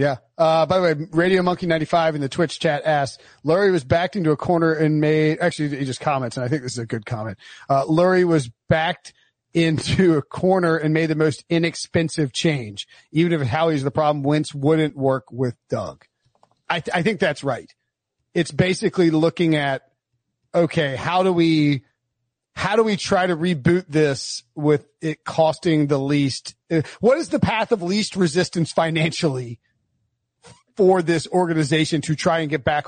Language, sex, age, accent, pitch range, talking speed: English, male, 40-59, American, 135-175 Hz, 185 wpm